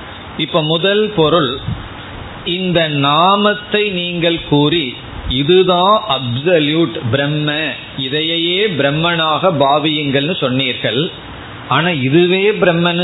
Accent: native